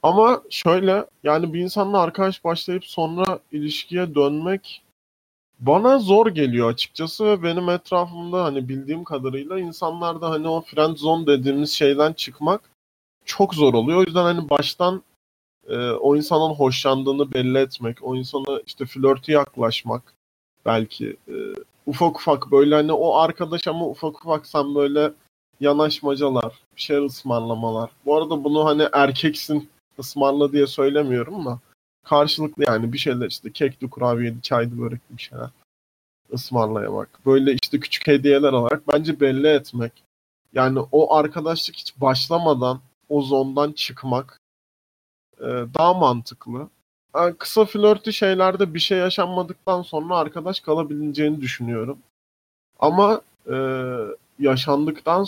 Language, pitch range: Turkish, 130-170 Hz